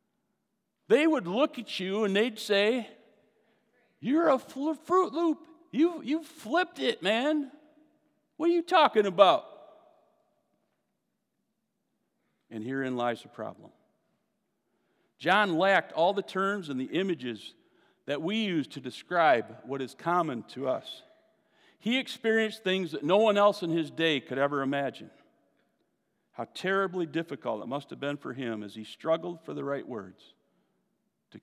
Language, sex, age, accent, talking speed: English, male, 50-69, American, 145 wpm